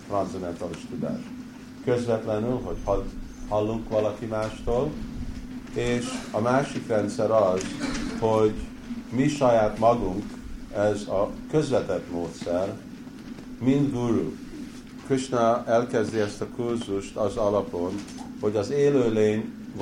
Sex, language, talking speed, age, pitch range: male, Hungarian, 95 wpm, 50-69, 100-145 Hz